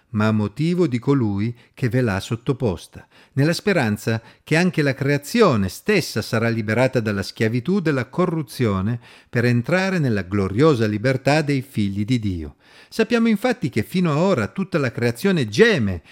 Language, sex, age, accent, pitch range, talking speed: Italian, male, 40-59, native, 110-165 Hz, 155 wpm